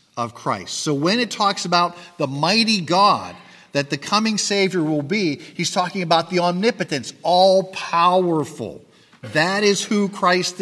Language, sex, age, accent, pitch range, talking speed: English, male, 50-69, American, 130-180 Hz, 135 wpm